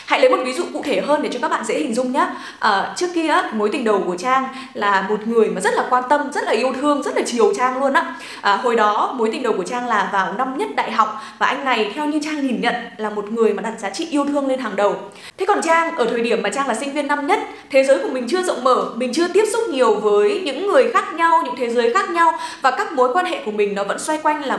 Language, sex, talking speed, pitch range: Vietnamese, female, 300 wpm, 220-330 Hz